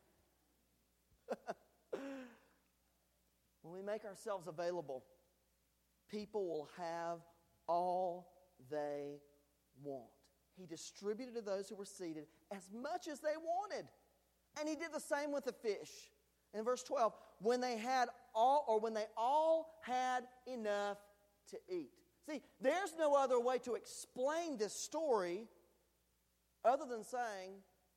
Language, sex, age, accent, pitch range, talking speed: English, male, 40-59, American, 185-275 Hz, 125 wpm